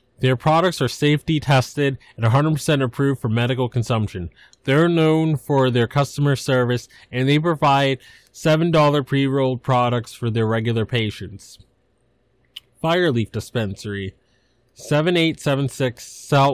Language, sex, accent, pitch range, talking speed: English, male, American, 120-140 Hz, 110 wpm